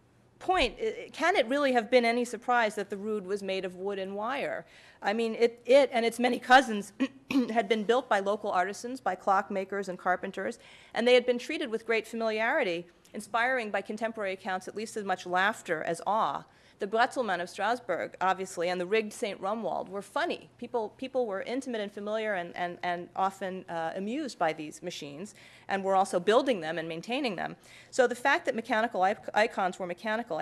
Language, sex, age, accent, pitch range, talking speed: English, female, 40-59, American, 180-230 Hz, 190 wpm